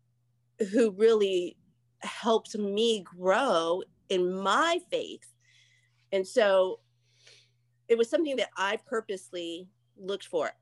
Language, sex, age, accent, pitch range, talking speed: English, female, 30-49, American, 150-195 Hz, 100 wpm